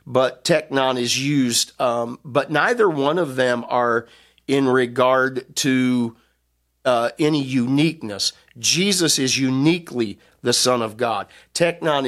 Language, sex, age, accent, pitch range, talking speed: English, male, 50-69, American, 120-145 Hz, 125 wpm